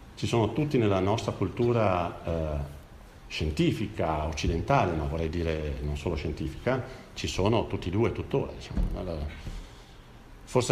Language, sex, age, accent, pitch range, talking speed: Italian, male, 50-69, native, 90-115 Hz, 140 wpm